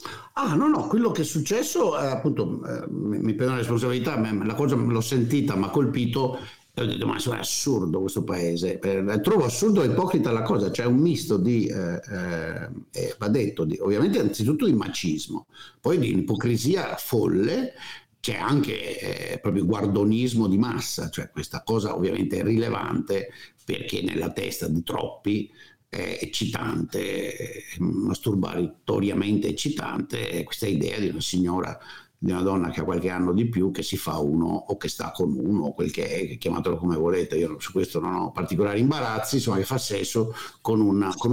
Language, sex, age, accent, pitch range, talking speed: Italian, male, 60-79, native, 95-125 Hz, 170 wpm